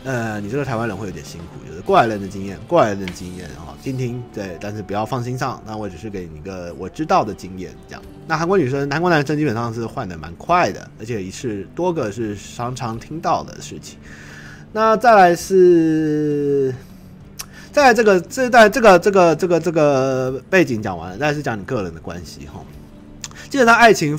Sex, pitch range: male, 90-145 Hz